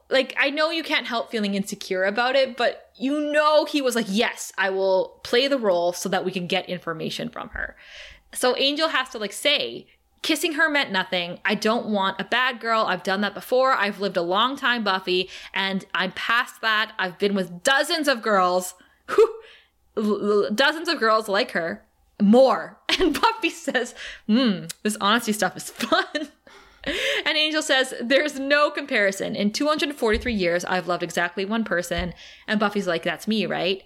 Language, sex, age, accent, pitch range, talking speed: English, female, 20-39, American, 185-255 Hz, 180 wpm